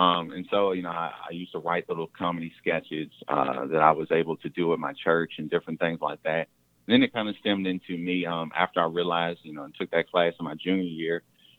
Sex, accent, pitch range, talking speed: male, American, 80-95 Hz, 255 wpm